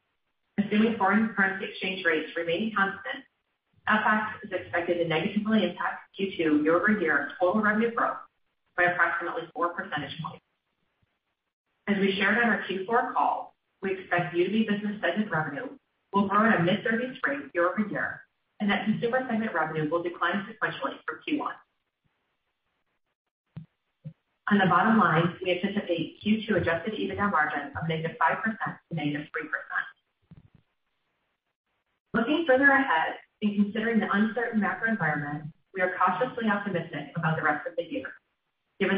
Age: 30-49